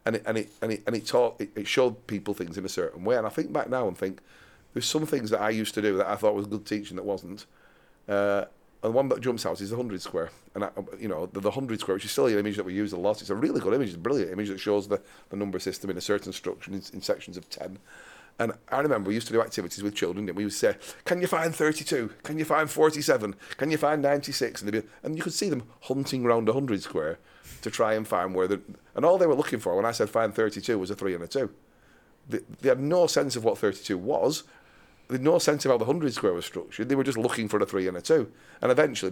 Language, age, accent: English, 40-59, British